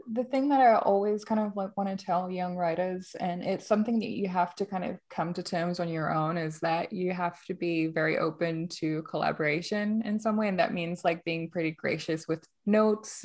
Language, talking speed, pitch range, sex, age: English, 220 wpm, 160-185 Hz, female, 20-39